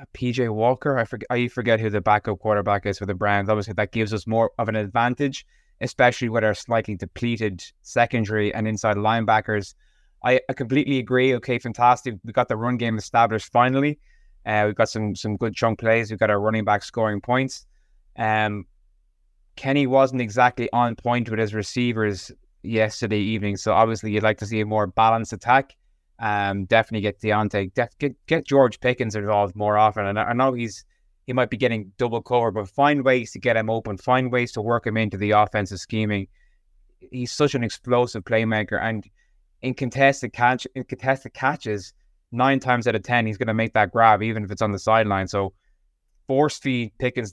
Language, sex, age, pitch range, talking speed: English, male, 20-39, 105-125 Hz, 190 wpm